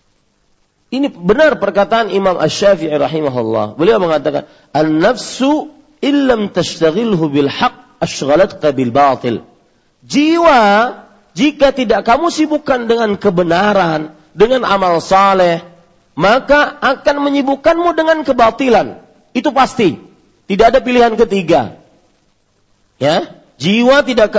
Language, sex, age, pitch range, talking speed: Malay, male, 40-59, 155-245 Hz, 95 wpm